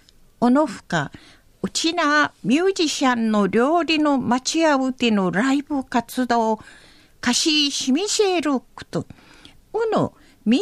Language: Japanese